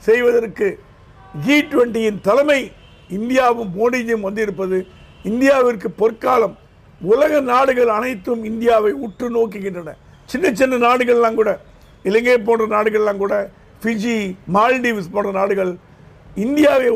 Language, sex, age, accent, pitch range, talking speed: Tamil, male, 50-69, native, 205-250 Hz, 100 wpm